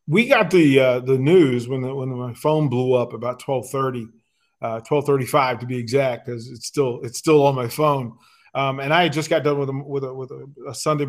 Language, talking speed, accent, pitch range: English, 225 wpm, American, 130-155 Hz